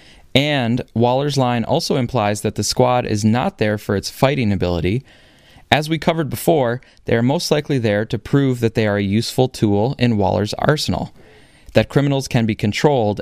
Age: 20-39